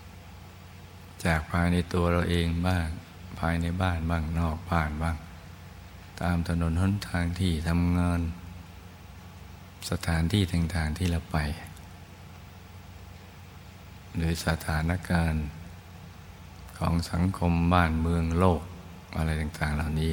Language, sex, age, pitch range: Thai, male, 60-79, 85-90 Hz